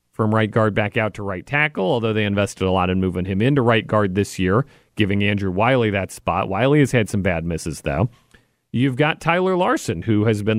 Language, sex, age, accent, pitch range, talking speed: English, male, 40-59, American, 95-145 Hz, 225 wpm